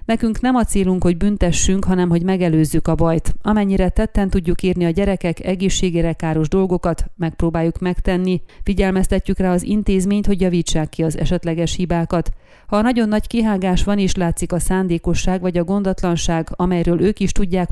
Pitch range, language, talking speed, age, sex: 170-195 Hz, Hungarian, 165 wpm, 30-49, female